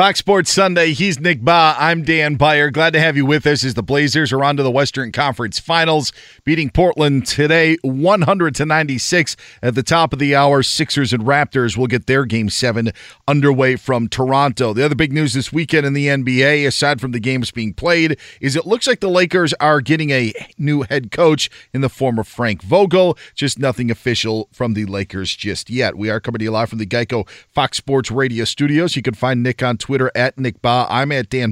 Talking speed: 220 wpm